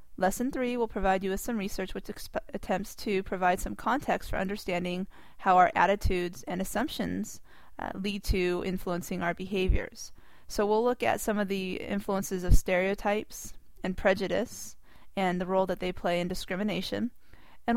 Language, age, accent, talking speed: English, 30-49, American, 160 wpm